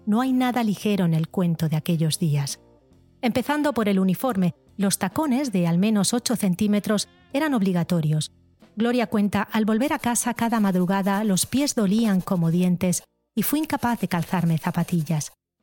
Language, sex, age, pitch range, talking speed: Spanish, female, 30-49, 175-230 Hz, 160 wpm